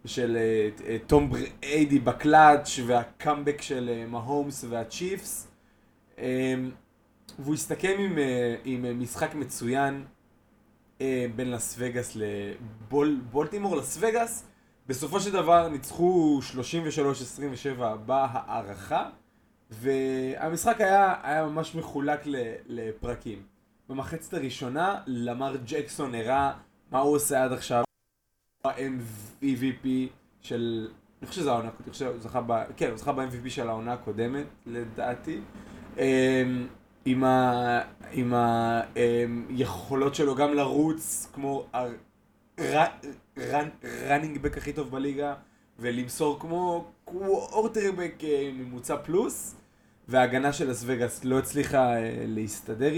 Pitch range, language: 120-150 Hz, Hebrew